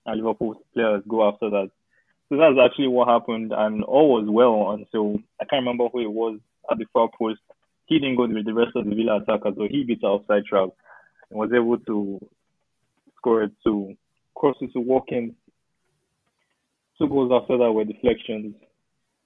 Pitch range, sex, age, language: 110-125 Hz, male, 20-39, English